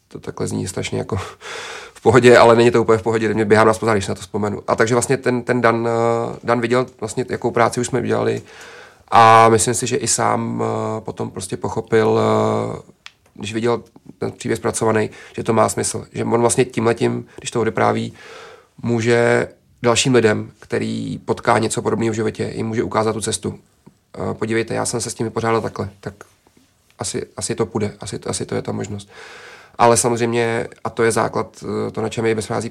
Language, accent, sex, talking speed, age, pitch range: Czech, native, male, 195 wpm, 30-49, 110-115 Hz